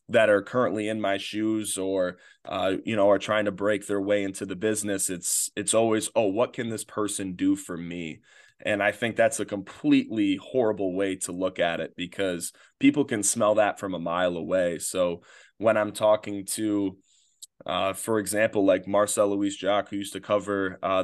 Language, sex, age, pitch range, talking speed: English, male, 20-39, 95-110 Hz, 195 wpm